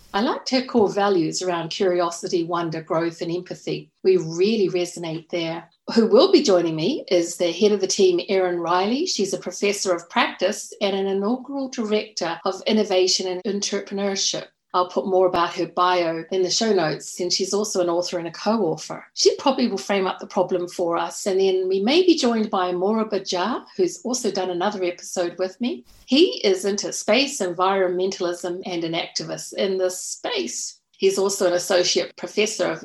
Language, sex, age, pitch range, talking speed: English, female, 50-69, 180-210 Hz, 185 wpm